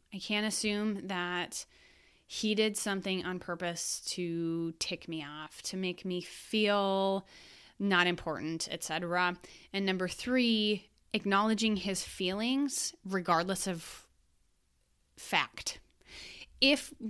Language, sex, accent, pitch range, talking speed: English, female, American, 175-220 Hz, 110 wpm